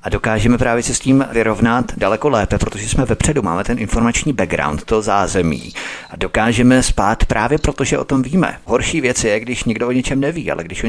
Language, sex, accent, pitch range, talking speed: Czech, male, native, 105-125 Hz, 210 wpm